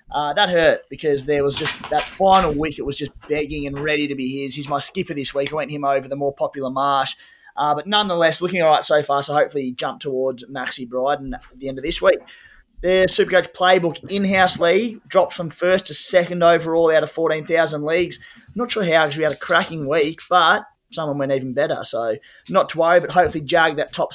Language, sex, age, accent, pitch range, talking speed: English, male, 20-39, Australian, 145-175 Hz, 225 wpm